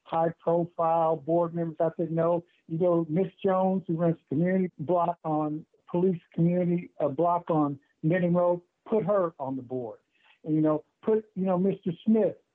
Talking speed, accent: 165 wpm, American